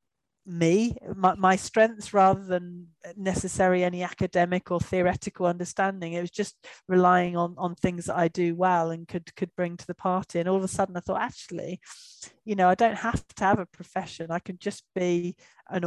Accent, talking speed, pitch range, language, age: British, 195 wpm, 170-190 Hz, English, 40-59